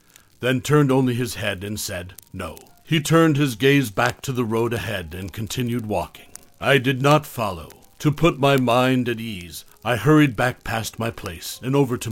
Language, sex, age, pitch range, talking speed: English, male, 60-79, 105-140 Hz, 195 wpm